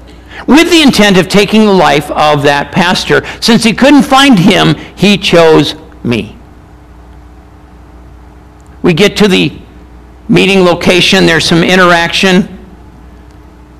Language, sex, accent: English, male, American